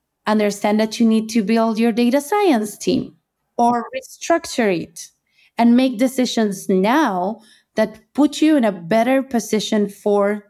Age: 20-39